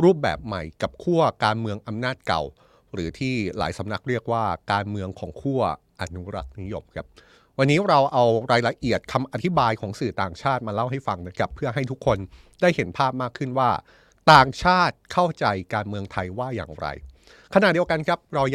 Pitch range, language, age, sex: 100-135 Hz, Thai, 30-49, male